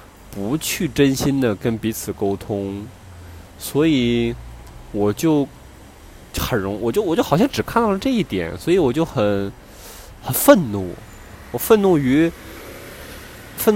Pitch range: 95-145 Hz